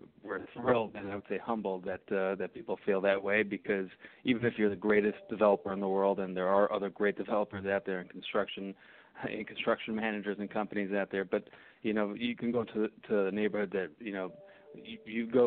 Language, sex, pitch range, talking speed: English, male, 95-110 Hz, 225 wpm